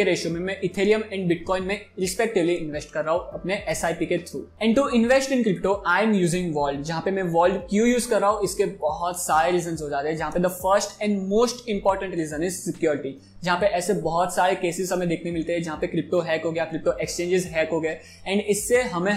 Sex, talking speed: male, 220 wpm